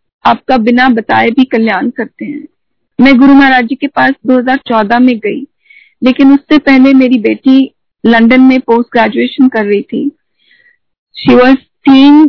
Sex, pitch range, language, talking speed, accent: female, 230-270 Hz, Hindi, 150 wpm, native